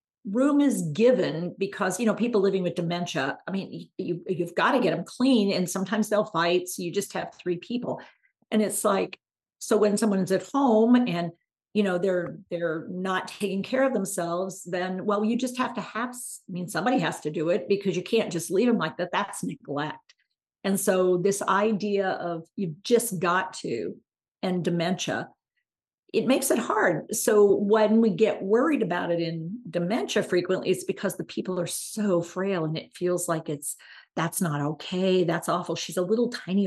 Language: English